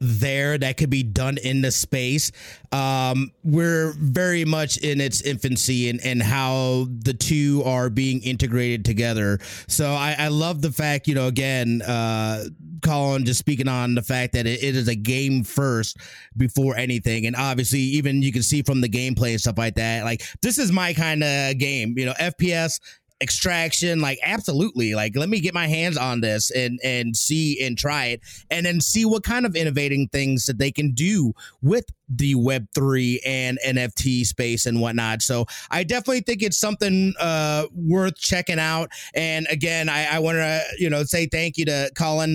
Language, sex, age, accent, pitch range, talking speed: English, male, 30-49, American, 125-155 Hz, 185 wpm